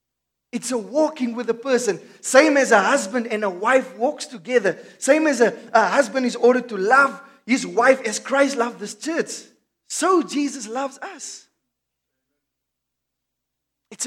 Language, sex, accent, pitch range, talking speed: English, male, South African, 195-265 Hz, 155 wpm